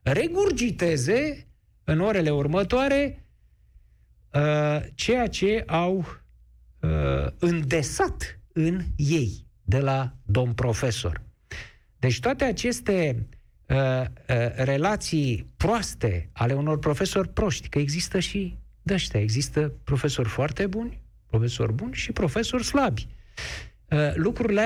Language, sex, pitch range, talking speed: Romanian, male, 120-180 Hz, 105 wpm